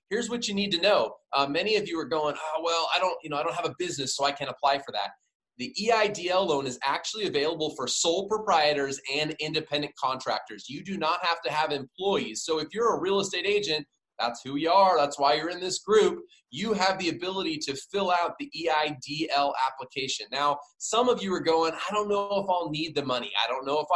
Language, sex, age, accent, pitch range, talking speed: English, male, 20-39, American, 145-200 Hz, 235 wpm